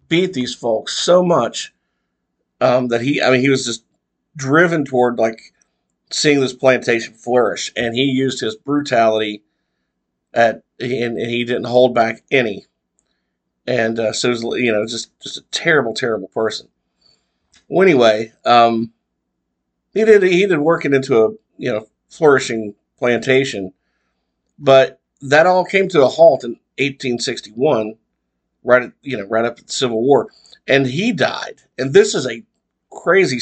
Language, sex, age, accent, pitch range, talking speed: English, male, 50-69, American, 115-140 Hz, 150 wpm